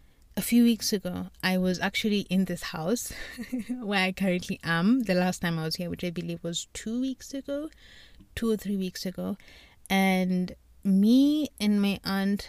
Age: 30-49